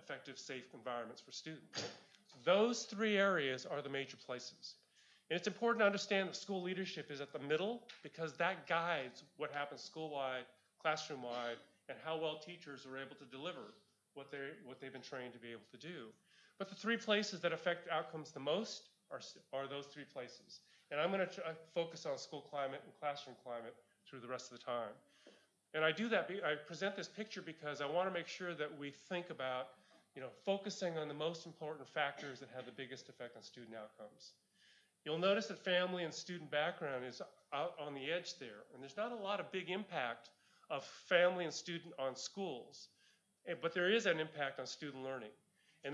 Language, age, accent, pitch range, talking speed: English, 30-49, American, 135-180 Hz, 200 wpm